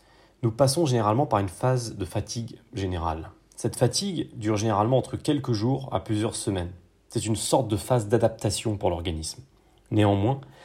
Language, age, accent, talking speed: French, 30-49, French, 160 wpm